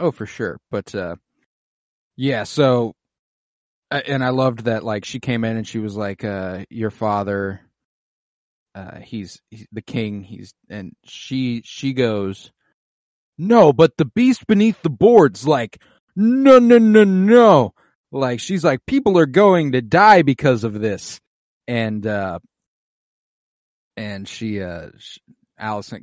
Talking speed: 145 wpm